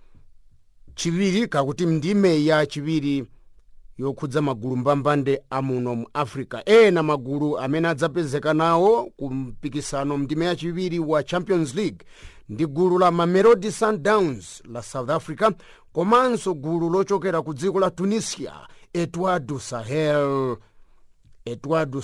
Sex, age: male, 50-69